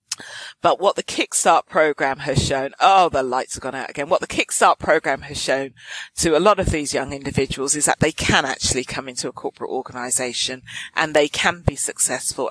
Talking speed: 200 wpm